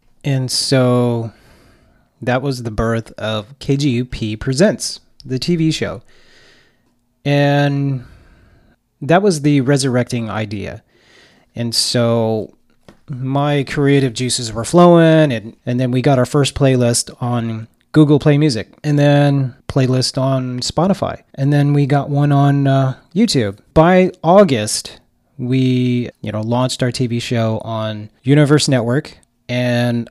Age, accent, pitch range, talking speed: 30-49, American, 120-150 Hz, 125 wpm